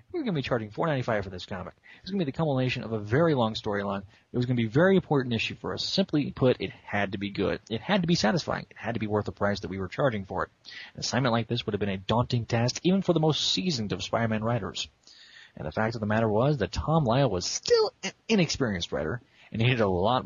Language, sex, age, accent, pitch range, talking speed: English, male, 30-49, American, 105-135 Hz, 280 wpm